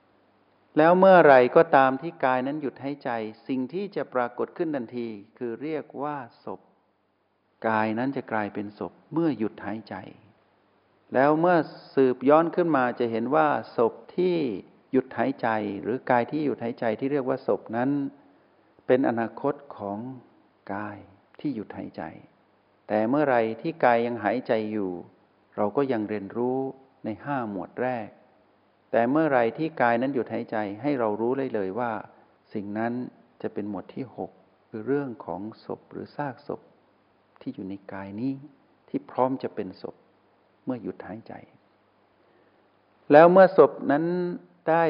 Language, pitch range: Thai, 105-140 Hz